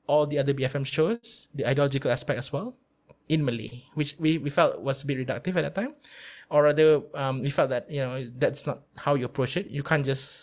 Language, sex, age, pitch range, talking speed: English, male, 20-39, 130-145 Hz, 230 wpm